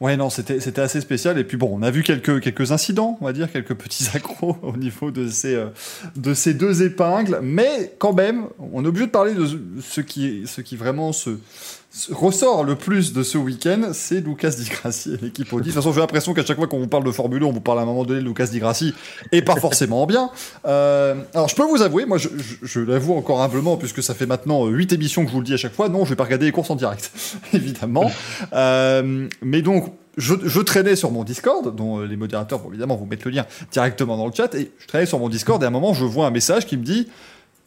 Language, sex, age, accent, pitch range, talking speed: French, male, 20-39, French, 125-175 Hz, 260 wpm